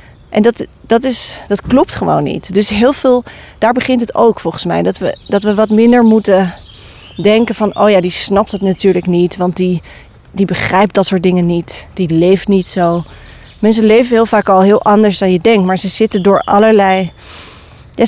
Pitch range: 185-220 Hz